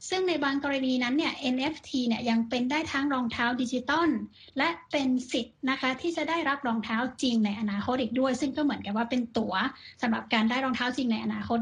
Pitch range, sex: 225-275 Hz, female